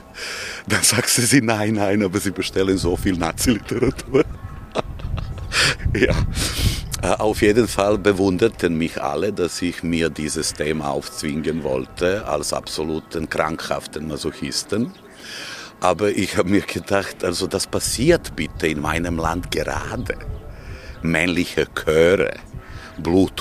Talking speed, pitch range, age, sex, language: 120 wpm, 80-100 Hz, 50-69, male, German